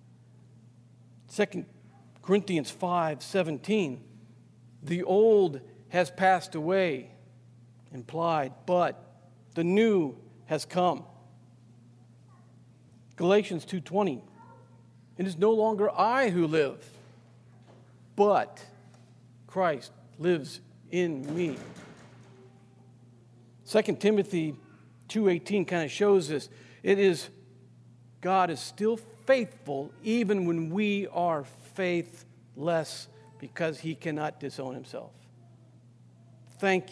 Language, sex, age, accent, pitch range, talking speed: English, male, 50-69, American, 120-175 Hz, 85 wpm